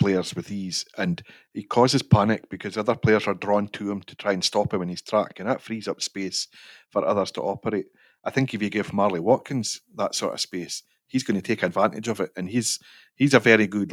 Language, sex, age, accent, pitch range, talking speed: English, male, 30-49, British, 100-125 Hz, 235 wpm